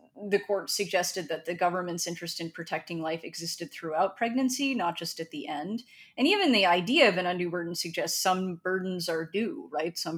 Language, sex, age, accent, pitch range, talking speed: English, female, 30-49, American, 165-205 Hz, 195 wpm